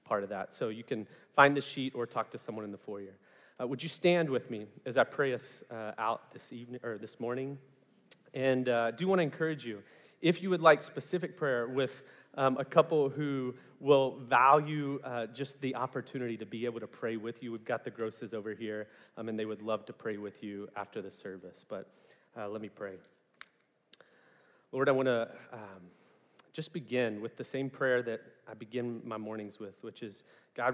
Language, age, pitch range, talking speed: English, 30-49, 110-130 Hz, 205 wpm